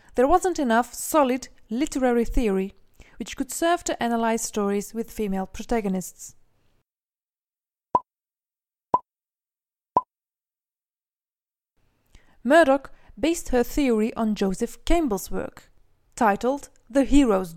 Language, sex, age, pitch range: English, female, 20-39, 200-280 Hz